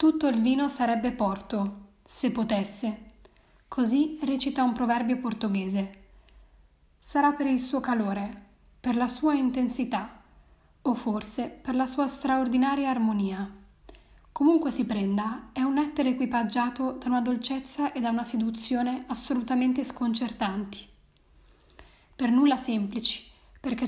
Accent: native